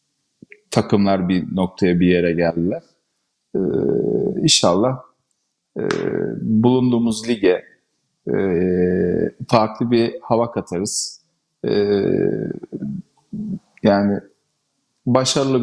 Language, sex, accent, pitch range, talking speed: Turkish, male, native, 105-120 Hz, 75 wpm